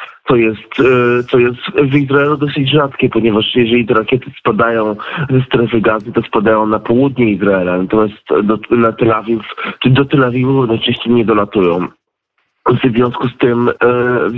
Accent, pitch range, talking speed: native, 115-140 Hz, 150 wpm